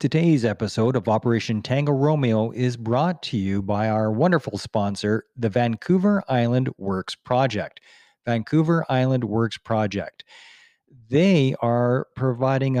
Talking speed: 120 wpm